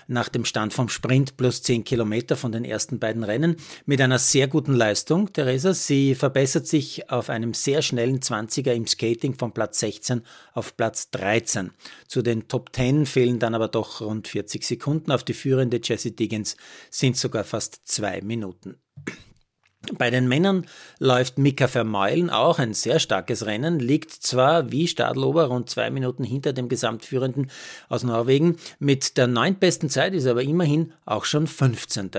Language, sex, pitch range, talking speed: German, male, 115-140 Hz, 170 wpm